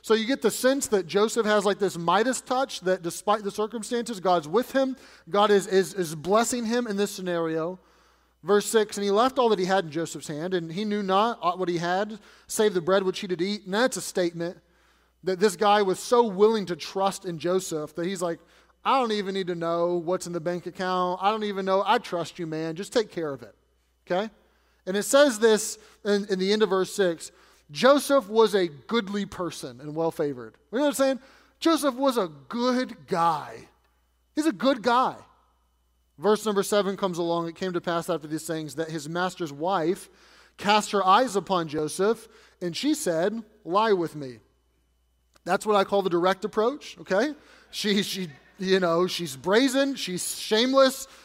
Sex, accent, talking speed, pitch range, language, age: male, American, 200 wpm, 175-225 Hz, English, 30-49